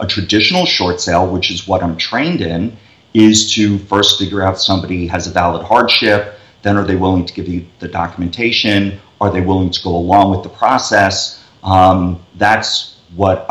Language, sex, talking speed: English, male, 180 wpm